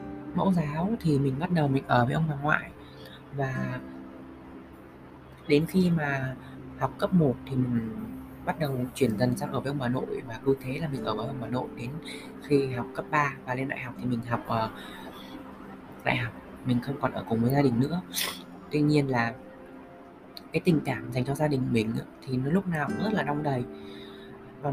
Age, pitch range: 20-39, 120-150 Hz